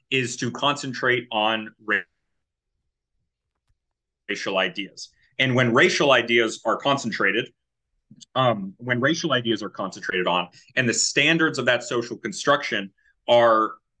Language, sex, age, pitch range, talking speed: English, male, 30-49, 110-135 Hz, 115 wpm